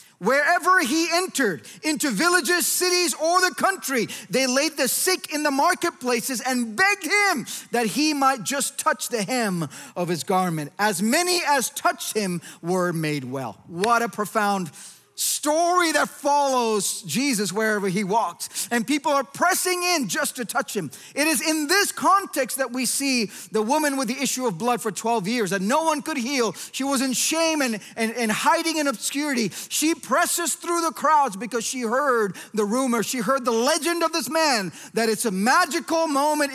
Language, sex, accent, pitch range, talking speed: English, male, American, 205-315 Hz, 180 wpm